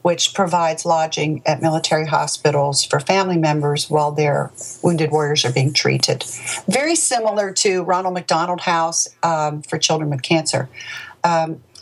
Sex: female